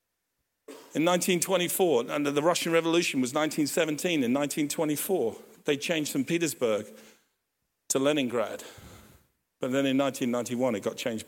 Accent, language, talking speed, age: British, English, 120 wpm, 50-69